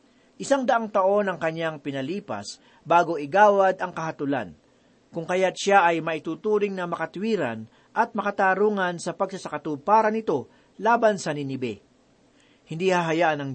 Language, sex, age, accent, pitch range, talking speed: Filipino, male, 40-59, native, 150-205 Hz, 125 wpm